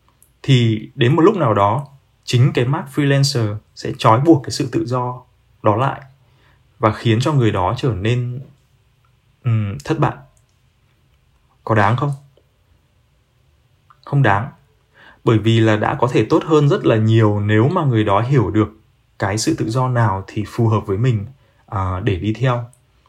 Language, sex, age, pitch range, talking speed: Vietnamese, male, 20-39, 110-135 Hz, 165 wpm